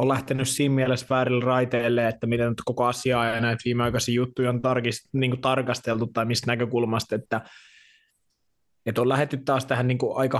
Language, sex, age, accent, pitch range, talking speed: Finnish, male, 20-39, native, 110-130 Hz, 165 wpm